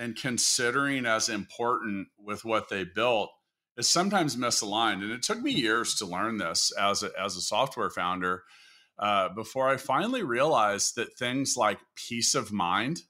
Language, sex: English, male